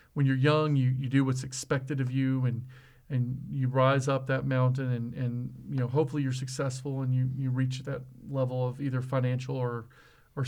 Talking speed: 200 wpm